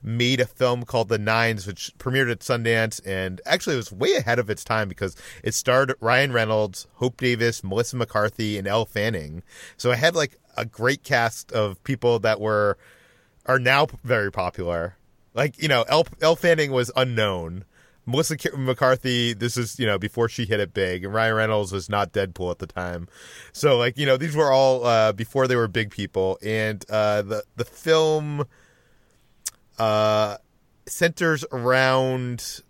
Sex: male